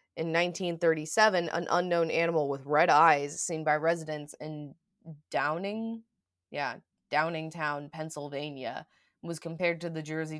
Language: English